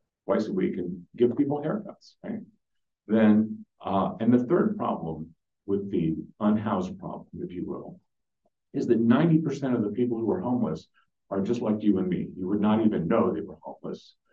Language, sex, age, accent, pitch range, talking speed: English, male, 50-69, American, 90-120 Hz, 185 wpm